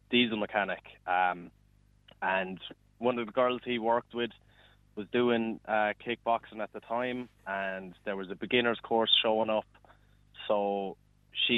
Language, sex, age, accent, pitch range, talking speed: English, male, 20-39, Irish, 105-120 Hz, 145 wpm